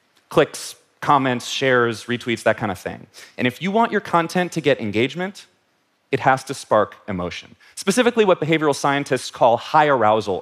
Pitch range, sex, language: 110-160 Hz, male, Korean